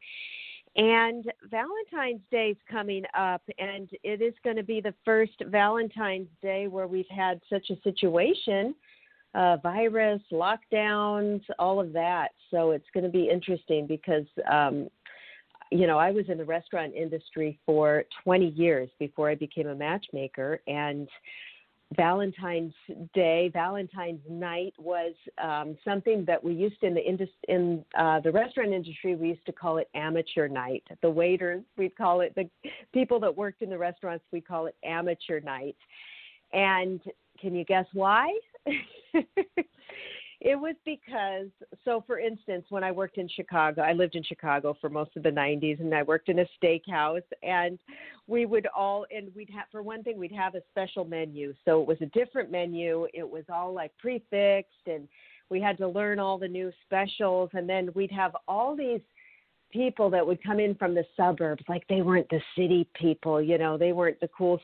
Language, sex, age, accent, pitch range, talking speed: English, female, 50-69, American, 170-210 Hz, 170 wpm